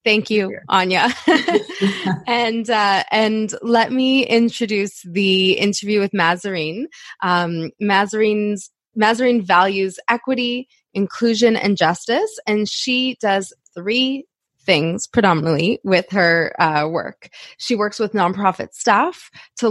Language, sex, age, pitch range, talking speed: English, female, 20-39, 170-220 Hz, 115 wpm